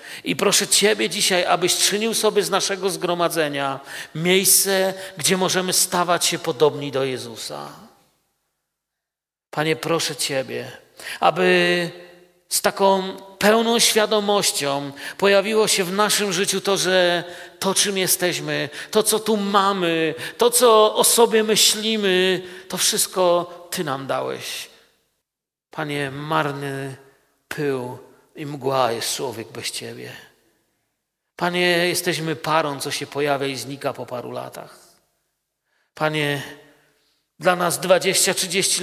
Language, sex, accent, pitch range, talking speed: Polish, male, native, 145-190 Hz, 115 wpm